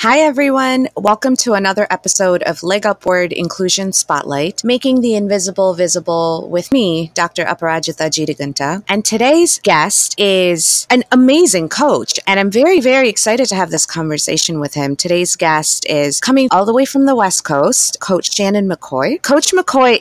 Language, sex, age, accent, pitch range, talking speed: English, female, 30-49, American, 170-220 Hz, 160 wpm